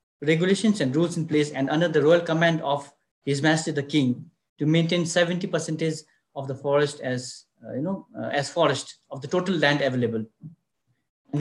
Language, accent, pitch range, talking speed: English, Indian, 135-180 Hz, 170 wpm